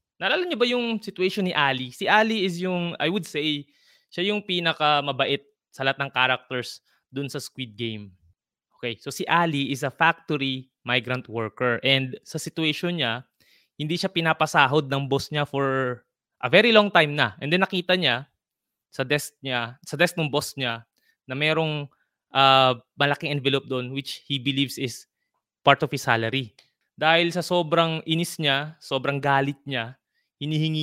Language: Filipino